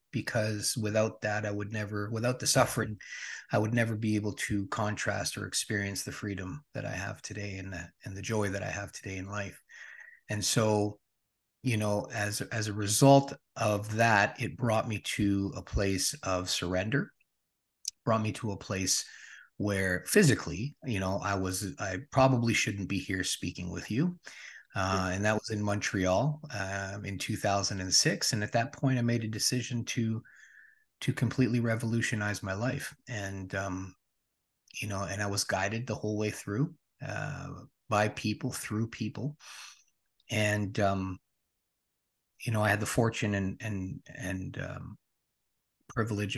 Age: 30-49